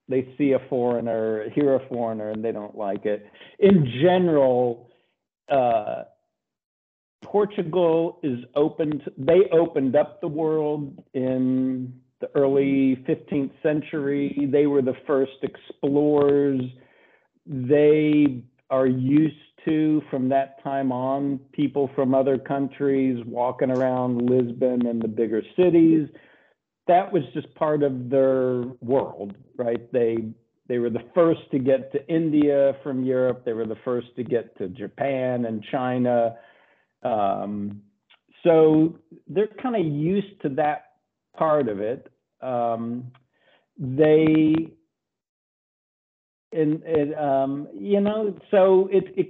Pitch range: 125-155 Hz